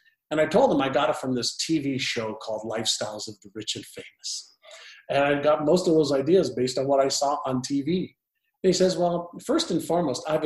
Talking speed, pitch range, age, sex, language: 225 wpm, 125-175 Hz, 50-69, male, English